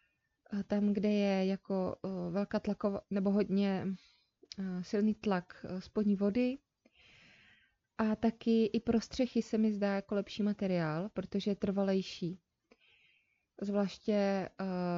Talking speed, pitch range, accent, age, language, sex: 110 wpm, 185-210 Hz, native, 20-39, Czech, female